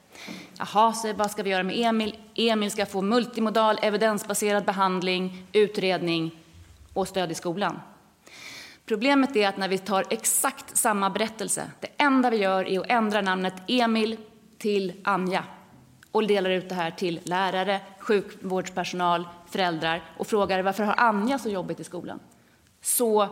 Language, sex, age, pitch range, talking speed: Danish, female, 30-49, 185-220 Hz, 145 wpm